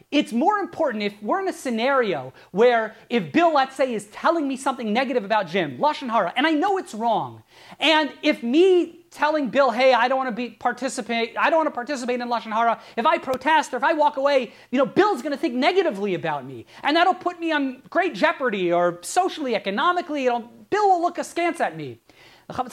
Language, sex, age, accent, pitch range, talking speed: English, male, 30-49, American, 230-320 Hz, 210 wpm